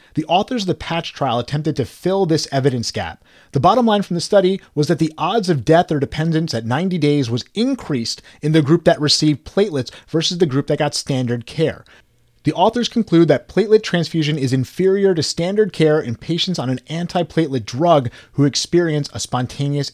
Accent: American